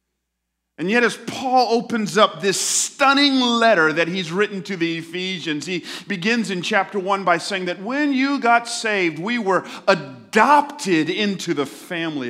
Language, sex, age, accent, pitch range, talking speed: English, male, 40-59, American, 175-230 Hz, 160 wpm